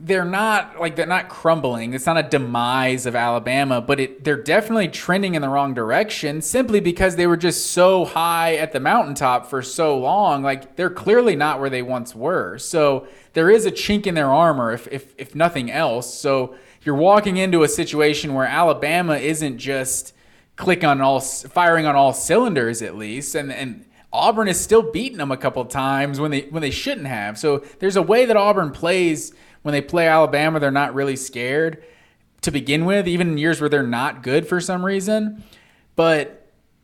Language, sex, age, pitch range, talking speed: English, male, 20-39, 135-180 Hz, 195 wpm